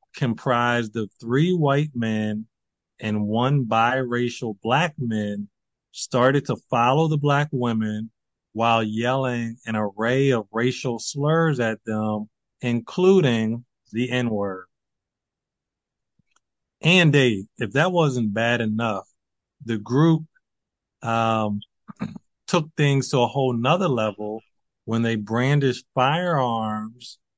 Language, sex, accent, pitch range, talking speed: English, male, American, 110-135 Hz, 105 wpm